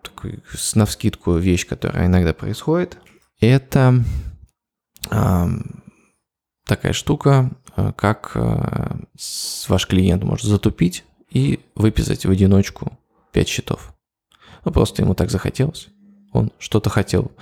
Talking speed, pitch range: 110 wpm, 90-120 Hz